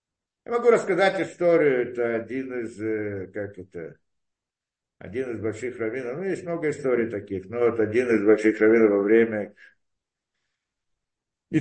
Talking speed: 140 wpm